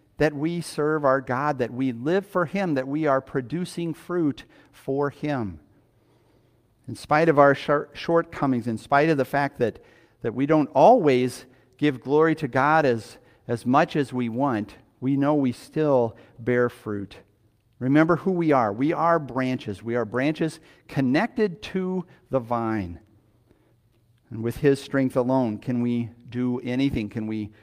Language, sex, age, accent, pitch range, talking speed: English, male, 50-69, American, 115-150 Hz, 160 wpm